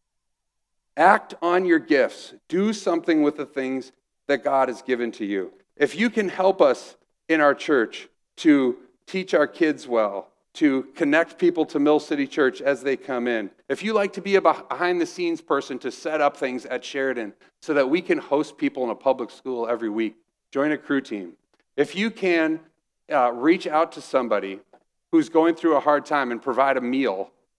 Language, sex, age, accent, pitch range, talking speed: English, male, 40-59, American, 125-175 Hz, 190 wpm